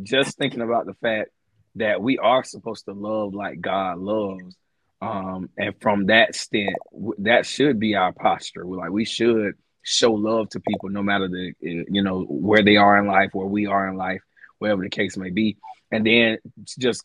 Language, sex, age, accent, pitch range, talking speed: English, male, 20-39, American, 95-110 Hz, 195 wpm